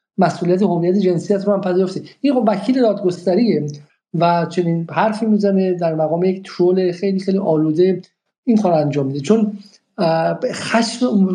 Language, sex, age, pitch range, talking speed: Persian, male, 50-69, 165-205 Hz, 145 wpm